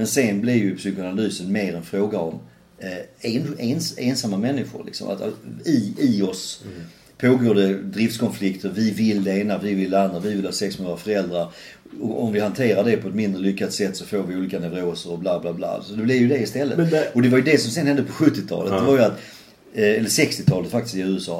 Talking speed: 225 wpm